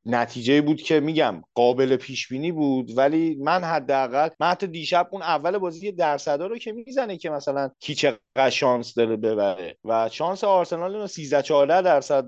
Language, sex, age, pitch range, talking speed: Persian, male, 30-49, 120-170 Hz, 175 wpm